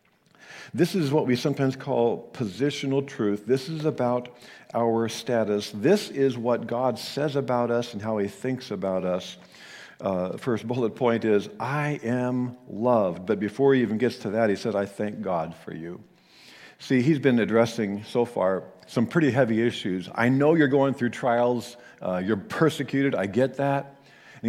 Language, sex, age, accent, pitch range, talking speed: English, male, 50-69, American, 115-150 Hz, 175 wpm